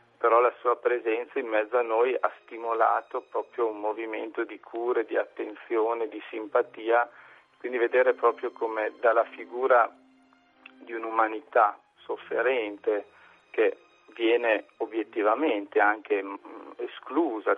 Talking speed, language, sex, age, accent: 115 wpm, Italian, male, 40-59, native